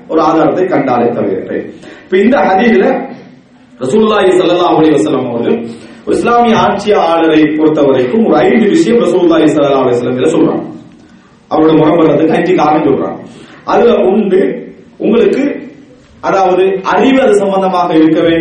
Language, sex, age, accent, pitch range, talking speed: English, male, 40-59, Indian, 165-235 Hz, 100 wpm